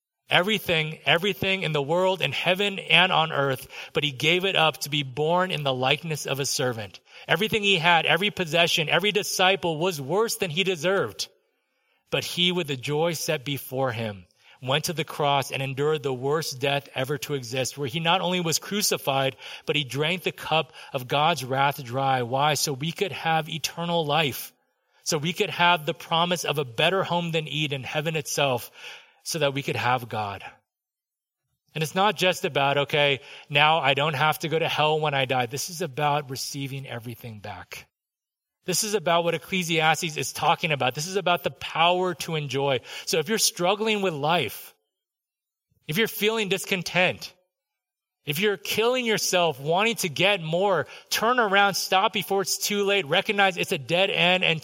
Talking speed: 185 wpm